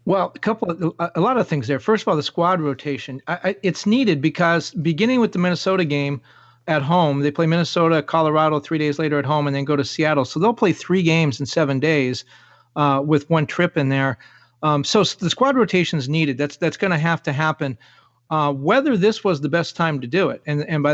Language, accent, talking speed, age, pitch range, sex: English, American, 230 wpm, 40-59, 140-175 Hz, male